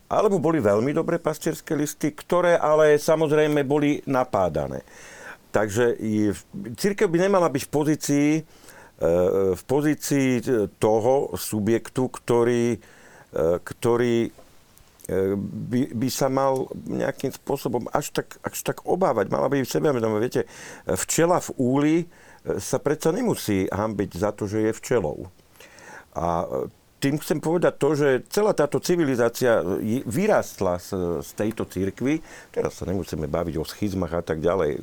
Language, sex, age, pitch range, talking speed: Slovak, male, 50-69, 95-150 Hz, 125 wpm